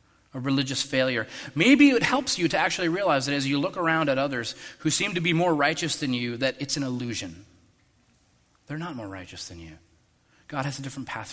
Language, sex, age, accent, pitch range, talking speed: English, male, 30-49, American, 110-150 Hz, 210 wpm